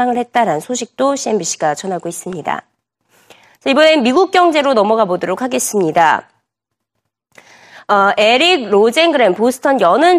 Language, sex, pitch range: Korean, female, 220-315 Hz